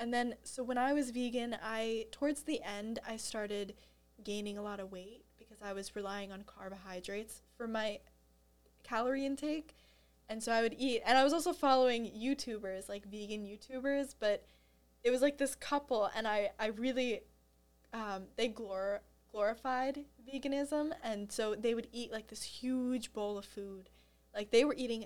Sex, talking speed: female, 170 wpm